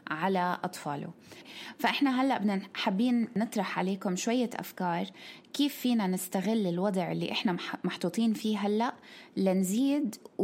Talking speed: 115 wpm